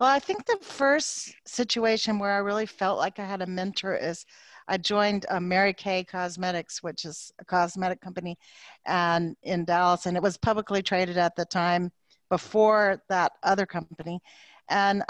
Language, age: English, 50-69